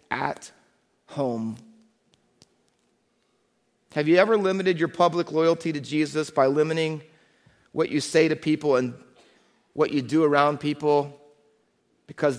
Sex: male